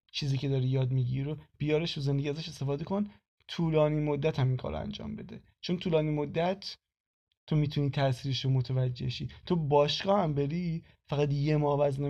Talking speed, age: 170 wpm, 20-39